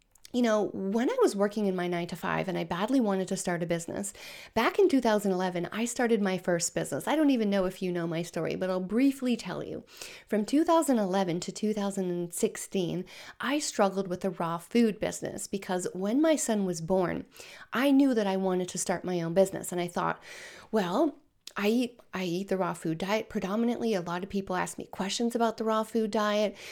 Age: 30-49